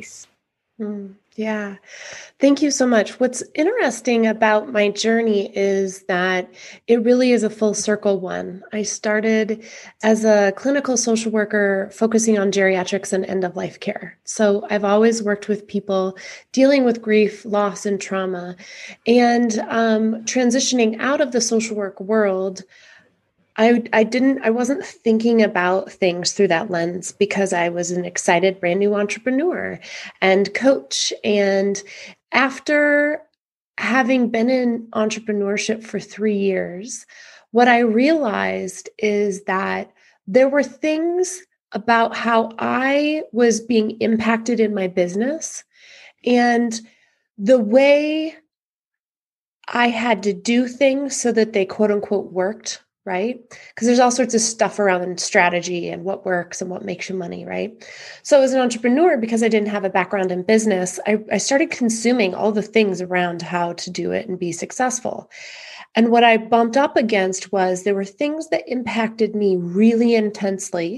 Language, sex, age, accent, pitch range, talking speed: English, female, 20-39, American, 195-240 Hz, 150 wpm